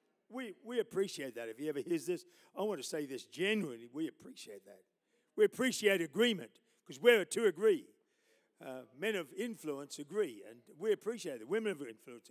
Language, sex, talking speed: English, male, 180 wpm